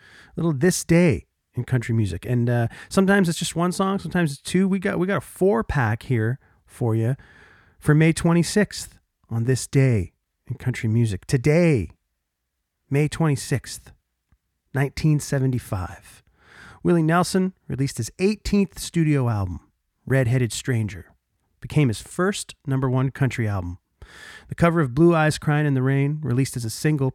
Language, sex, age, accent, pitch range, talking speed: English, male, 40-59, American, 105-150 Hz, 150 wpm